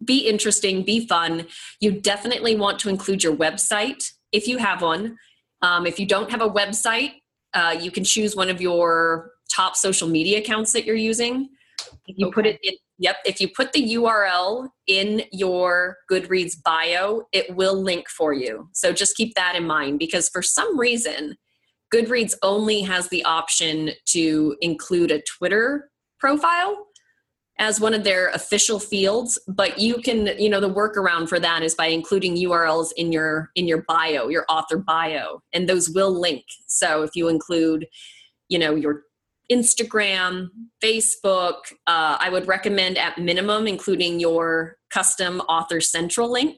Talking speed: 165 wpm